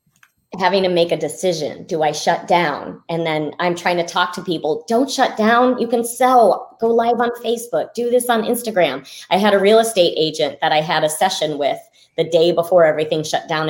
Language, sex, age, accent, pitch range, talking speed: English, female, 30-49, American, 170-220 Hz, 215 wpm